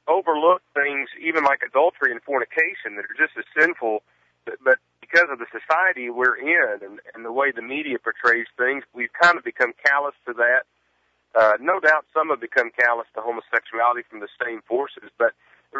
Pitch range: 120-180 Hz